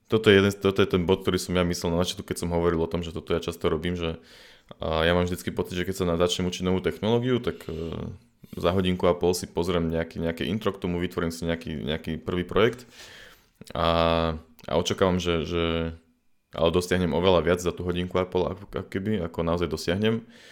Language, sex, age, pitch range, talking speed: Slovak, male, 20-39, 80-90 Hz, 215 wpm